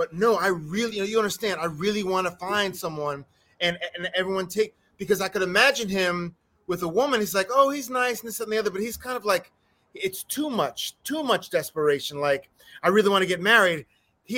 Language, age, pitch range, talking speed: English, 30-49, 185-245 Hz, 225 wpm